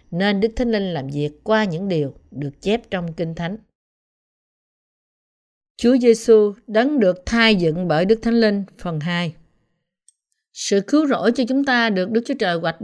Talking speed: 175 wpm